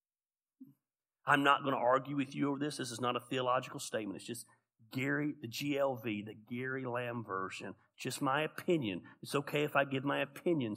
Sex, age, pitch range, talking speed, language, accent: male, 40-59, 135-190 Hz, 190 wpm, English, American